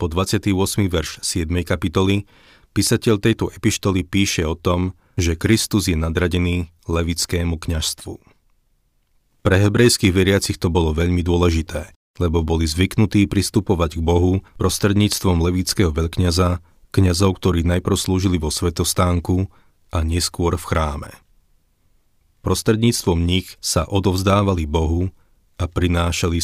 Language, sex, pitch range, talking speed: Slovak, male, 85-100 Hz, 115 wpm